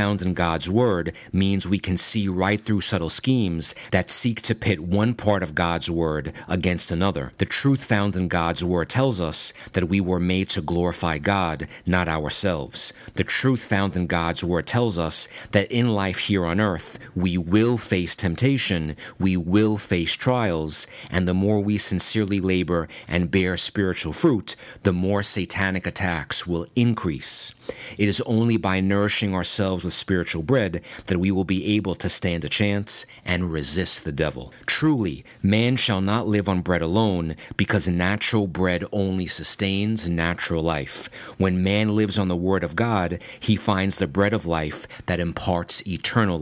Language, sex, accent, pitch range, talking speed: English, male, American, 85-105 Hz, 170 wpm